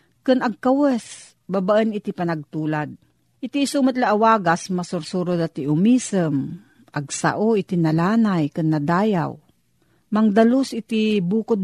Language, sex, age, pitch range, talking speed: Filipino, female, 40-59, 165-225 Hz, 105 wpm